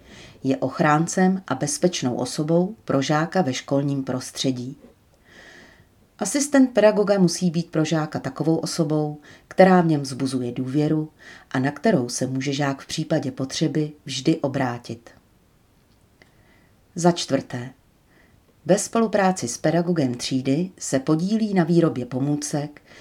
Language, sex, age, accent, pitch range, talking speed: Czech, female, 40-59, native, 130-175 Hz, 120 wpm